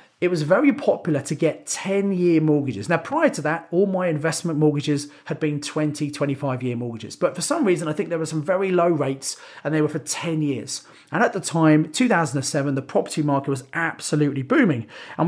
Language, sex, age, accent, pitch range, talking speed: English, male, 40-59, British, 145-175 Hz, 200 wpm